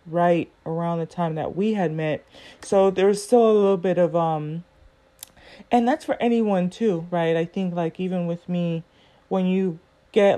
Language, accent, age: English, American, 30-49